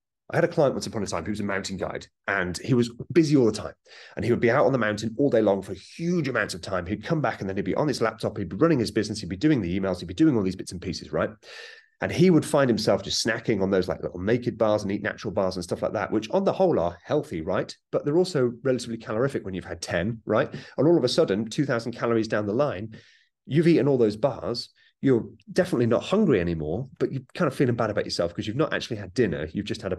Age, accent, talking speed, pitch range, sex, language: 30-49, British, 280 wpm, 100-135 Hz, male, English